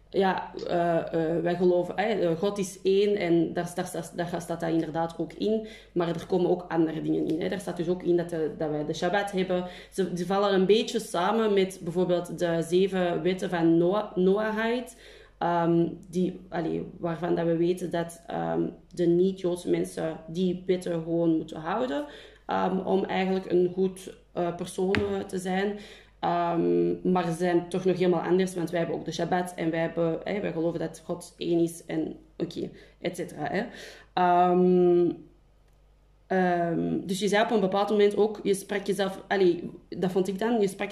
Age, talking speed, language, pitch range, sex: 20-39, 170 wpm, English, 170-200 Hz, female